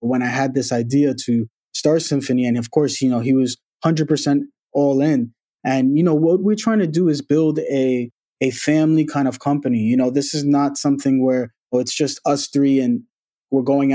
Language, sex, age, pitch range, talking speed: English, male, 20-39, 130-150 Hz, 210 wpm